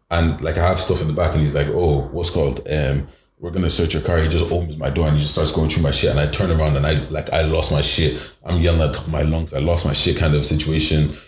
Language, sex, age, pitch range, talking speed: English, male, 30-49, 75-90 Hz, 300 wpm